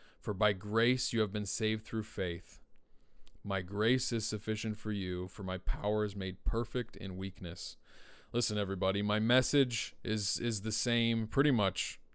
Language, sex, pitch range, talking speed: English, male, 100-120 Hz, 165 wpm